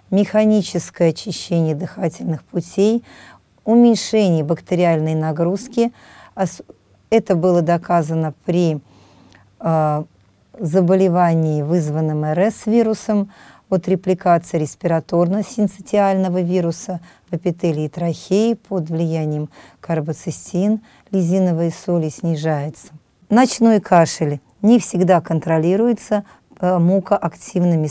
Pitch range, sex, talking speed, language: 165-205 Hz, female, 75 wpm, Russian